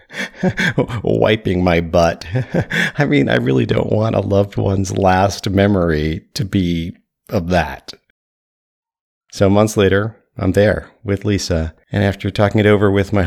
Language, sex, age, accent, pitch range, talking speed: English, male, 40-59, American, 90-110 Hz, 145 wpm